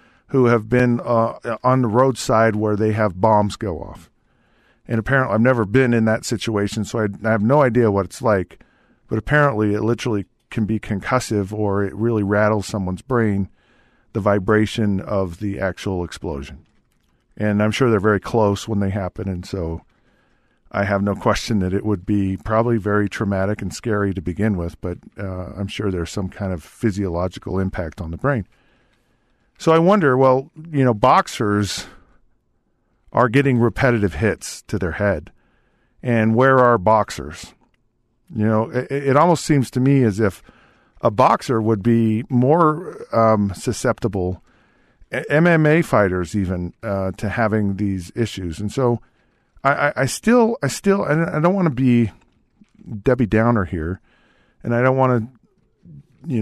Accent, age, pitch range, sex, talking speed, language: American, 50-69, 100-125 Hz, male, 160 wpm, English